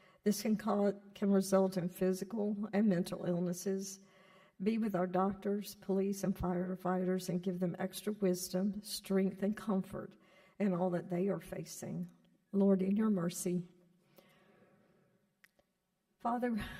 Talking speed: 130 wpm